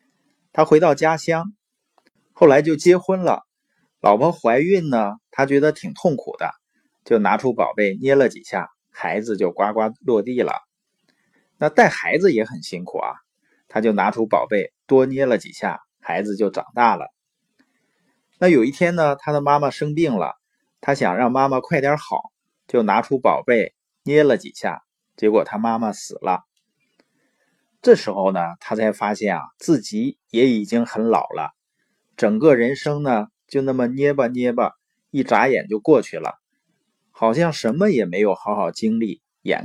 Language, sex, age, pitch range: Chinese, male, 30-49, 115-160 Hz